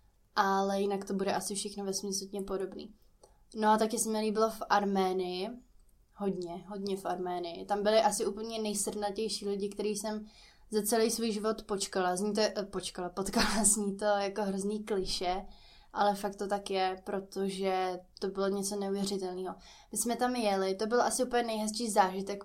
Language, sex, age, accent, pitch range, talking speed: Czech, female, 20-39, native, 190-215 Hz, 175 wpm